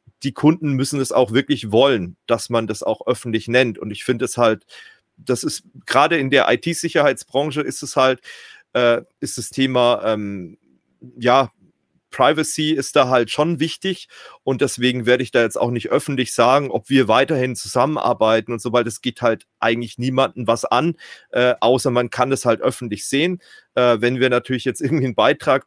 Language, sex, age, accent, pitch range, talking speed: German, male, 40-59, German, 115-135 Hz, 180 wpm